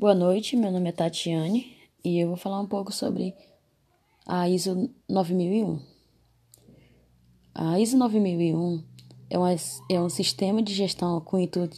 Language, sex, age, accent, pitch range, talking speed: Portuguese, female, 10-29, Brazilian, 175-210 Hz, 145 wpm